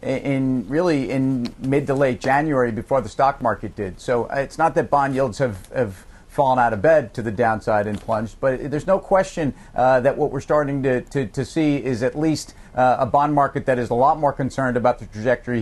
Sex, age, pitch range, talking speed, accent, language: male, 40-59, 125-150 Hz, 225 wpm, American, English